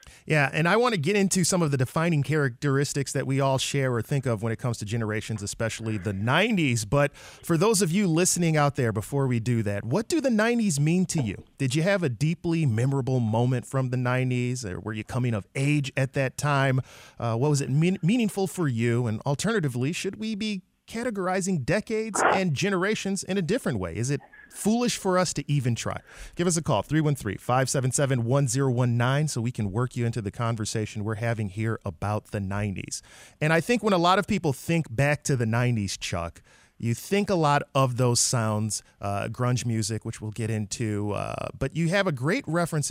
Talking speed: 205 wpm